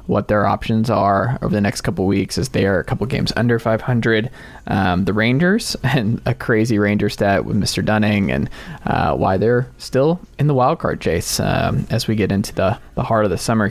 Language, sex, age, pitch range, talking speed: English, male, 20-39, 105-130 Hz, 210 wpm